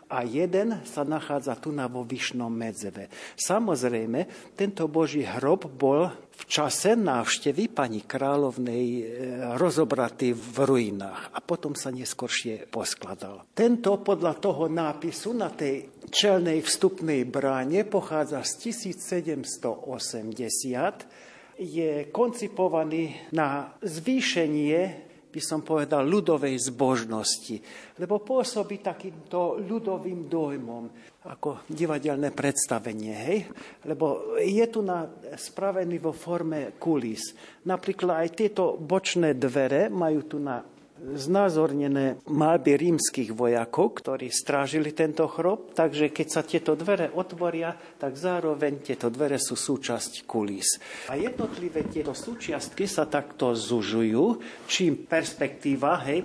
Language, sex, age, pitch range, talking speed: Slovak, male, 50-69, 130-175 Hz, 110 wpm